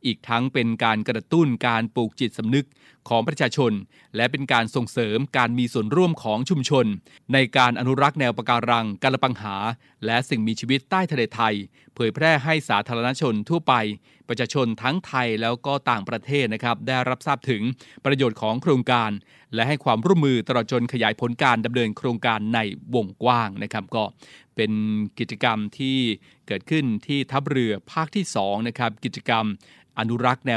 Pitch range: 115-135 Hz